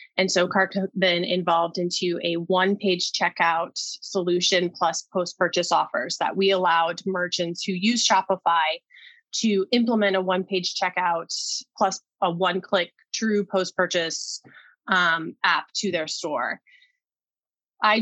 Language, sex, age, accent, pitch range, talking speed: English, female, 20-39, American, 175-210 Hz, 115 wpm